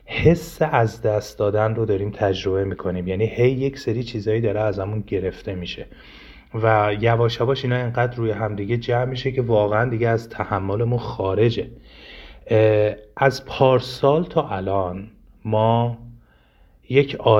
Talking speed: 135 wpm